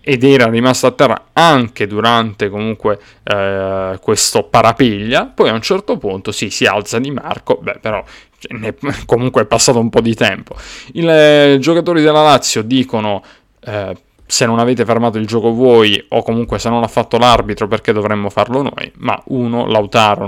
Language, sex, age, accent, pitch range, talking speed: Italian, male, 20-39, native, 100-125 Hz, 180 wpm